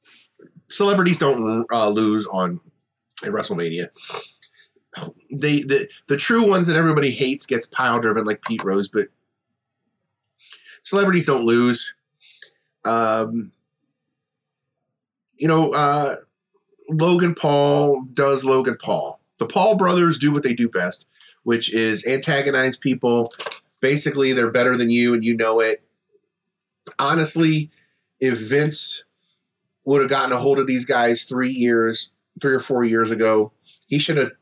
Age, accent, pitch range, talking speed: 30-49, American, 115-145 Hz, 130 wpm